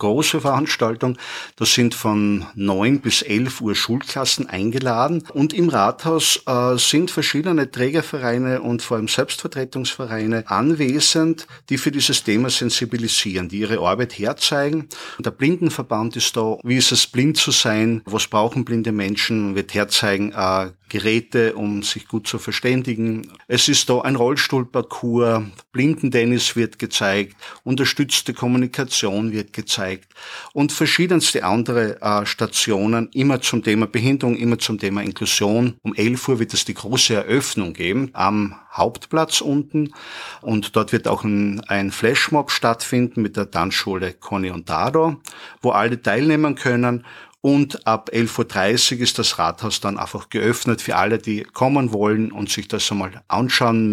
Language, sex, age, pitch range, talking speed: German, male, 50-69, 105-130 Hz, 145 wpm